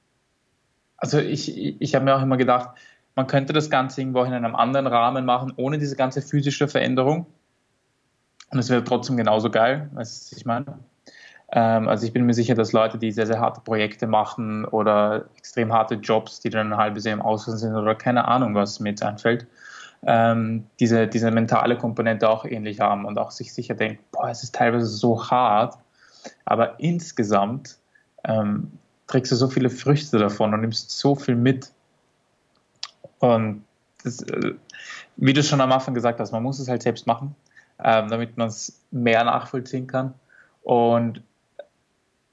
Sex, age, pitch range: male, 20-39, 115-130 Hz